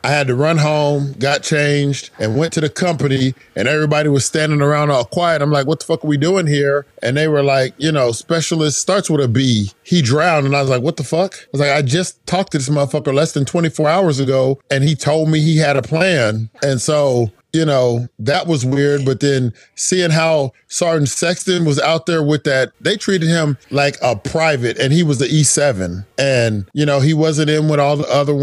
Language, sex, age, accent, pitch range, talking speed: English, male, 40-59, American, 135-155 Hz, 230 wpm